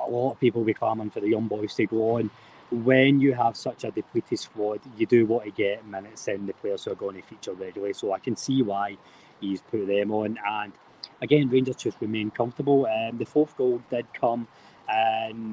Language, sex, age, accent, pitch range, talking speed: English, male, 20-39, British, 105-125 Hz, 220 wpm